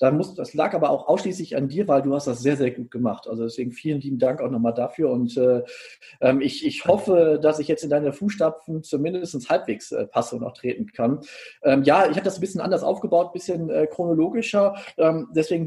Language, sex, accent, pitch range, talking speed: German, male, German, 135-170 Hz, 220 wpm